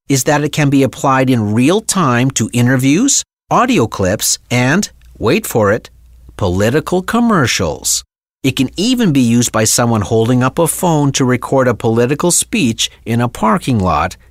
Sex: male